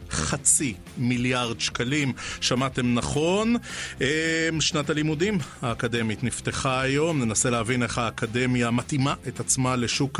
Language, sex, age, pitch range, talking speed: Hebrew, male, 30-49, 115-140 Hz, 105 wpm